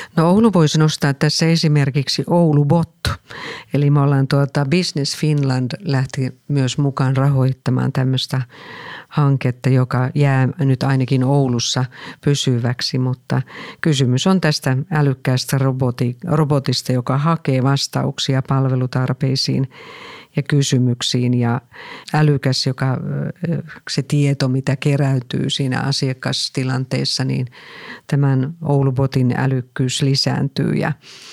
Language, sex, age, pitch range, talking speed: Finnish, female, 50-69, 130-145 Hz, 100 wpm